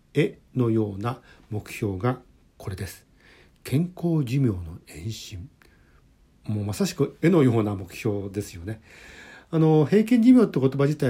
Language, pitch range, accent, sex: Japanese, 100-155 Hz, native, male